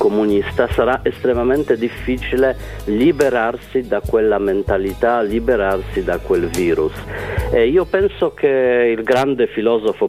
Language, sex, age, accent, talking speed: Italian, male, 50-69, native, 115 wpm